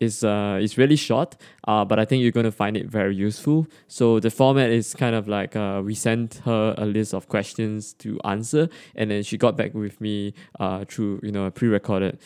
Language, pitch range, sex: English, 105-130 Hz, male